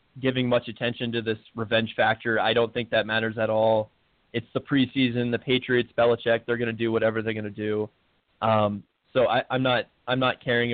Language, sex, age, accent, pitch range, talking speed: English, male, 20-39, American, 110-125 Hz, 205 wpm